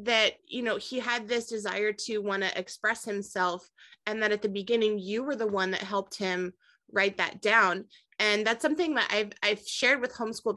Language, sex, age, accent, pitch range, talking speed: English, female, 20-39, American, 195-230 Hz, 205 wpm